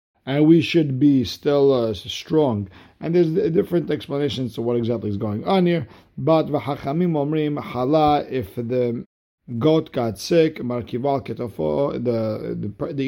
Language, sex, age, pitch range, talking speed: English, male, 50-69, 115-145 Hz, 120 wpm